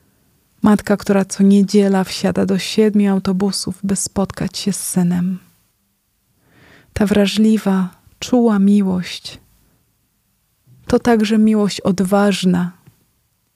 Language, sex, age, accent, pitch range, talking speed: Polish, female, 20-39, native, 180-205 Hz, 95 wpm